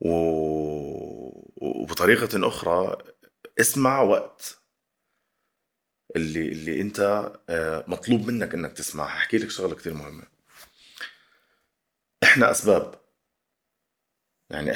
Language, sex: Arabic, male